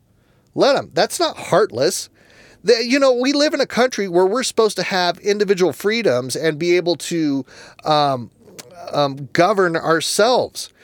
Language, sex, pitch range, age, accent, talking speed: English, male, 140-200 Hz, 30-49, American, 155 wpm